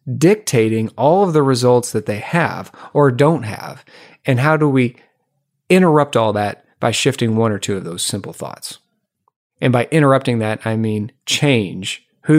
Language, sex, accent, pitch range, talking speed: English, male, American, 115-145 Hz, 170 wpm